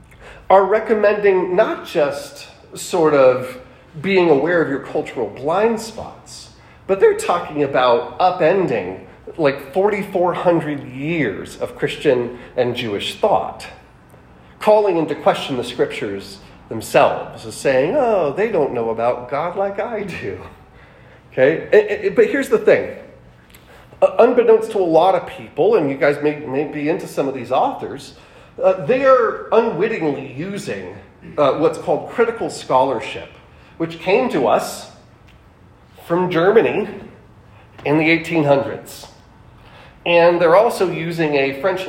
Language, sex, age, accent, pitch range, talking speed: English, male, 40-59, American, 125-195 Hz, 125 wpm